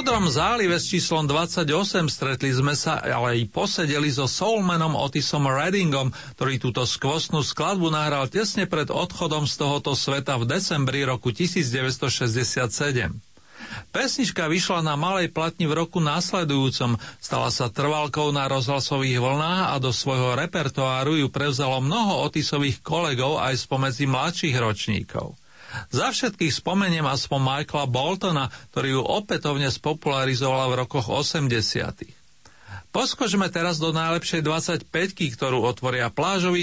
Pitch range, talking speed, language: 135-170 Hz, 130 wpm, Slovak